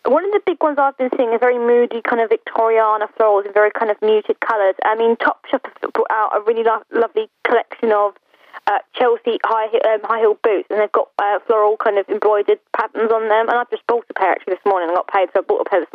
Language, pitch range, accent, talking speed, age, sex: English, 200-275 Hz, British, 255 wpm, 10-29, female